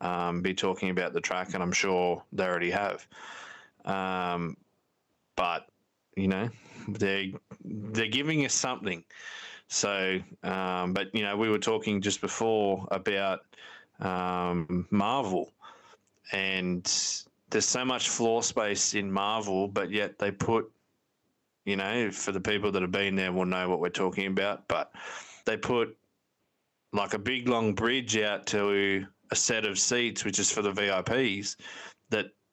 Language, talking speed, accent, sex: English, 150 wpm, Australian, male